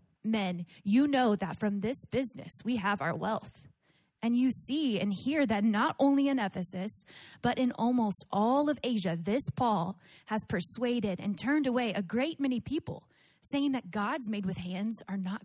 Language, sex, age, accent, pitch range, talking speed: English, female, 20-39, American, 195-255 Hz, 180 wpm